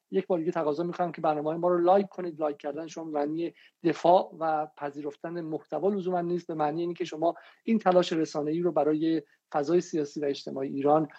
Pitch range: 150-180 Hz